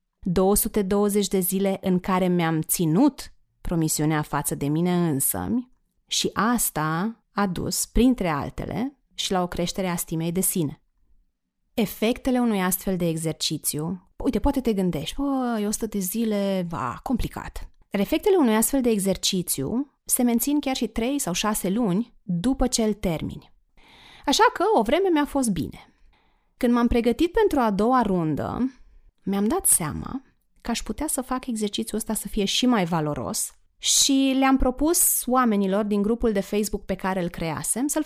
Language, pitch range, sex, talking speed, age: Romanian, 170-240 Hz, female, 155 wpm, 30-49